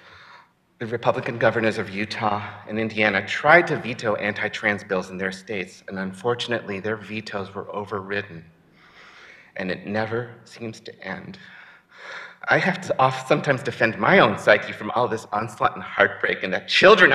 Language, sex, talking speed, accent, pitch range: English, male, 155 wpm, American, 105-135 Hz